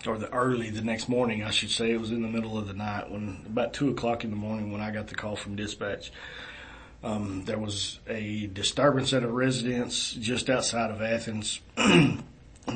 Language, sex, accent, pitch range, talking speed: English, male, American, 110-120 Hz, 205 wpm